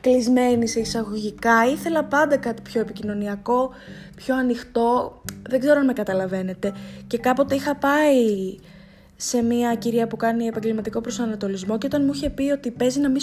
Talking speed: 160 wpm